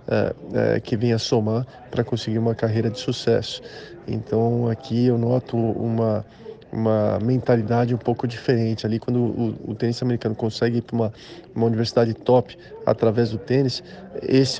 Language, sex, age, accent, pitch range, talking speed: Portuguese, male, 20-39, Brazilian, 115-130 Hz, 160 wpm